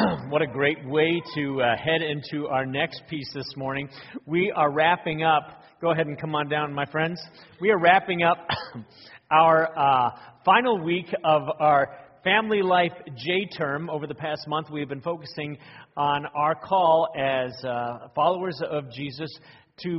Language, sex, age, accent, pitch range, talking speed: English, male, 40-59, American, 145-185 Hz, 165 wpm